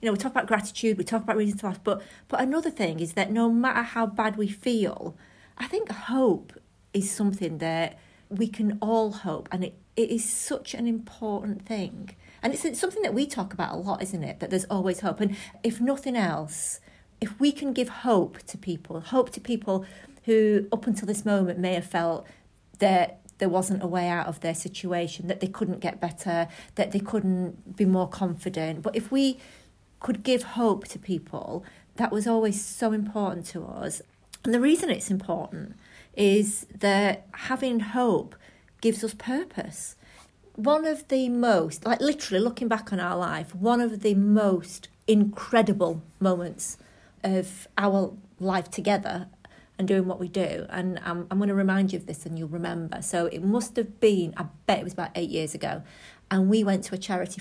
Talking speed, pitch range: 190 wpm, 180-225 Hz